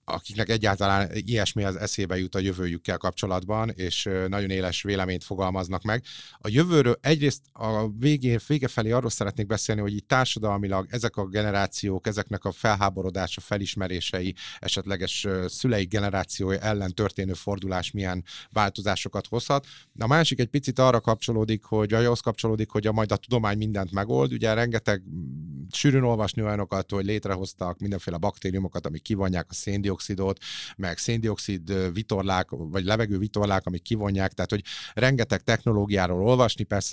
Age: 30-49